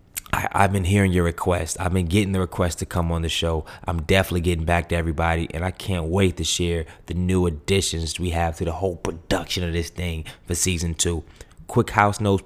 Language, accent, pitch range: English, American, 85-95 Hz